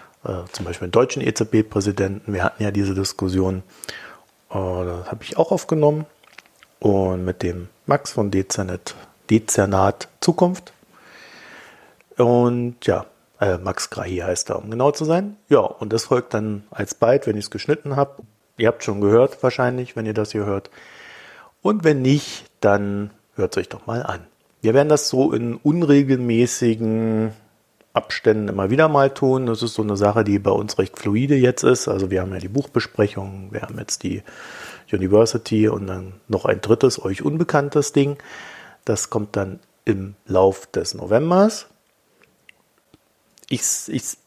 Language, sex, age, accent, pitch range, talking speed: German, male, 50-69, German, 100-125 Hz, 155 wpm